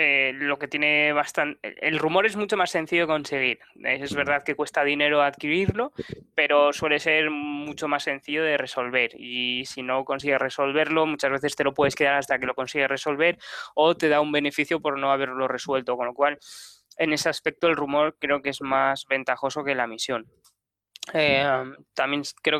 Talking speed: 180 wpm